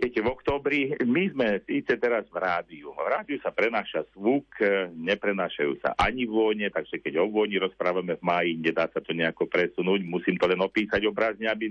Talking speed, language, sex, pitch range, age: 180 wpm, Slovak, male, 95-115 Hz, 50-69